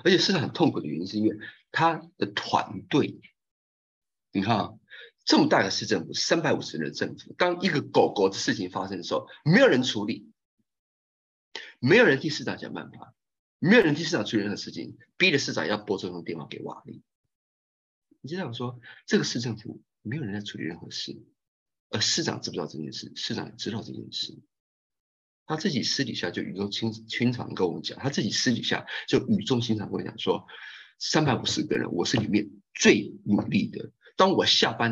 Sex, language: male, Chinese